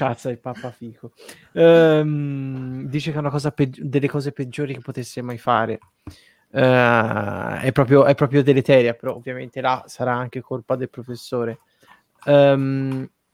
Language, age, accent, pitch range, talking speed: Italian, 20-39, native, 125-140 Hz, 150 wpm